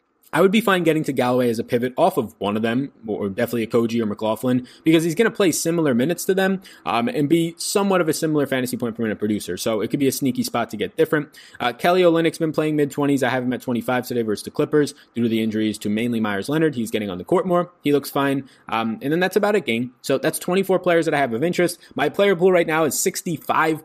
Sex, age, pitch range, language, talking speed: male, 20-39, 115-150 Hz, English, 280 wpm